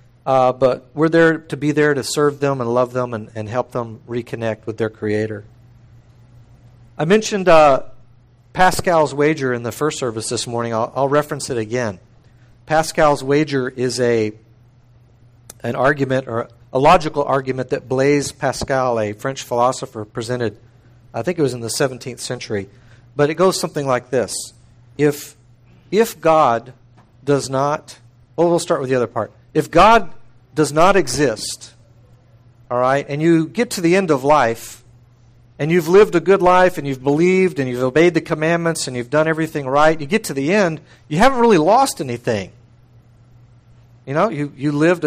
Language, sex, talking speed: English, male, 170 wpm